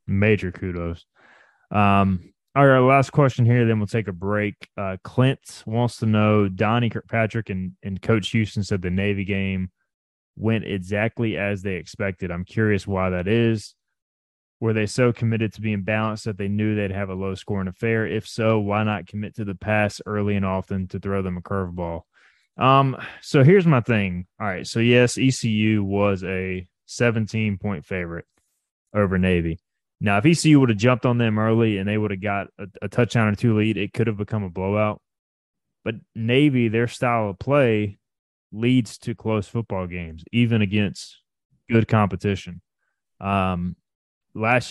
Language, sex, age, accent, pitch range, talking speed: English, male, 20-39, American, 95-115 Hz, 175 wpm